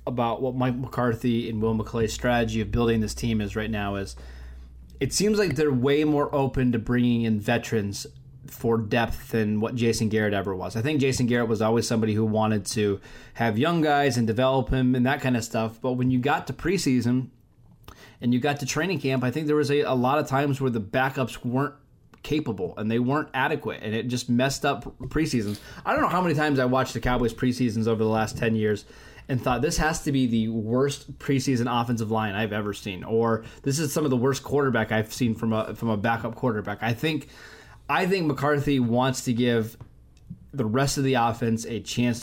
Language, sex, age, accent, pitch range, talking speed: English, male, 20-39, American, 110-140 Hz, 215 wpm